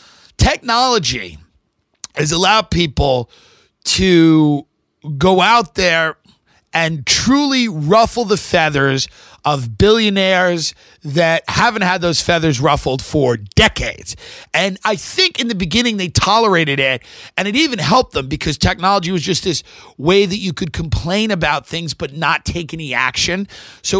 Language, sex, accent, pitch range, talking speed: English, male, American, 150-200 Hz, 140 wpm